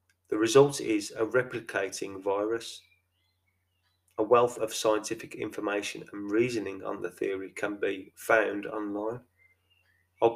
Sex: male